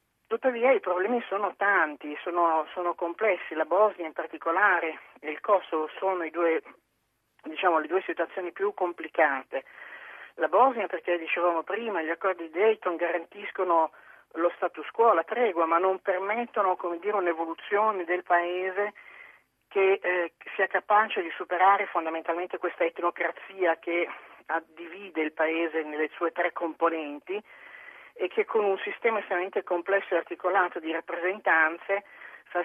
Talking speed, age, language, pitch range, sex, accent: 140 wpm, 40-59, Italian, 165-190 Hz, male, native